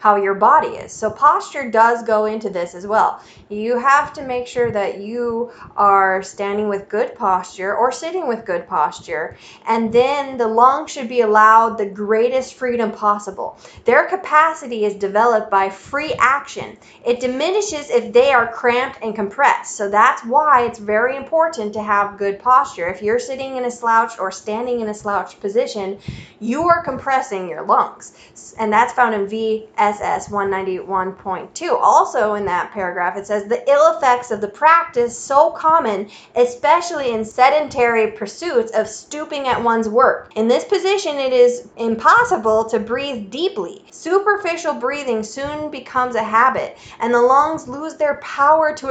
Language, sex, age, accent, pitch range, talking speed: English, female, 20-39, American, 215-285 Hz, 180 wpm